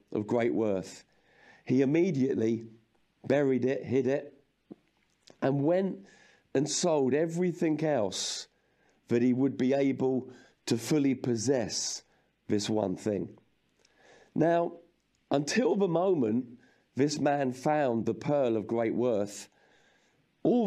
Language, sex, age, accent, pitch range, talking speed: English, male, 50-69, British, 115-150 Hz, 115 wpm